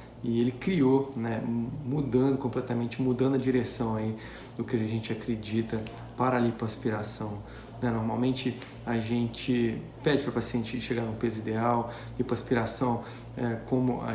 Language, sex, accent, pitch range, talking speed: Portuguese, male, Brazilian, 120-130 Hz, 135 wpm